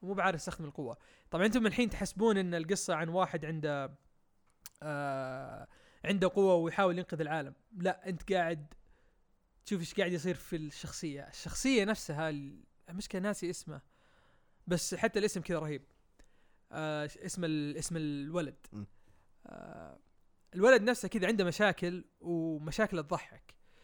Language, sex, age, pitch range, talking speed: Arabic, male, 20-39, 155-190 Hz, 125 wpm